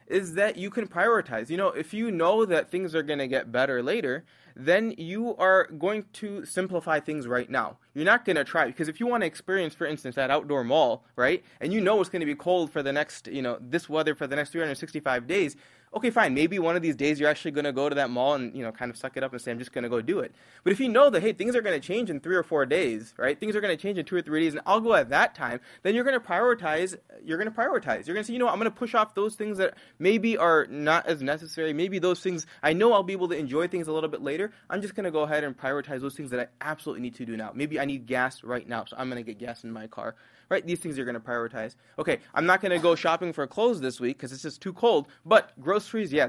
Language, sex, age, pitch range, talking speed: English, male, 20-39, 130-185 Hz, 300 wpm